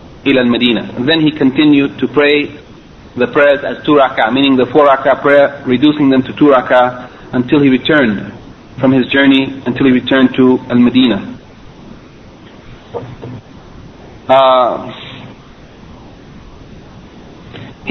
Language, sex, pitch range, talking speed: English, male, 130-150 Hz, 105 wpm